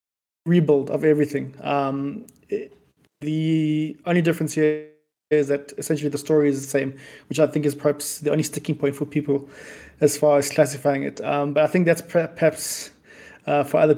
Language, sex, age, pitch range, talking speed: English, male, 20-39, 140-155 Hz, 175 wpm